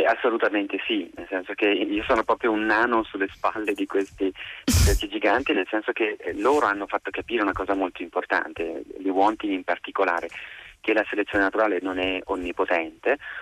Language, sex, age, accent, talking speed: Italian, male, 30-49, native, 175 wpm